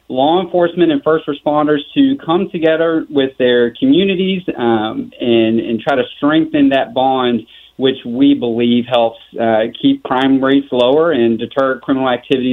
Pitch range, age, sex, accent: 120-150 Hz, 40-59, male, American